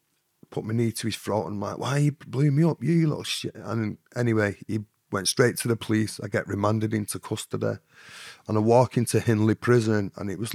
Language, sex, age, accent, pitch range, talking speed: English, male, 30-49, British, 110-130 Hz, 230 wpm